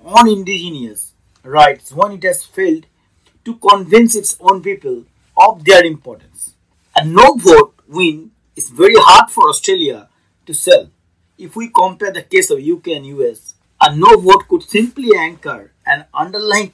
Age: 50-69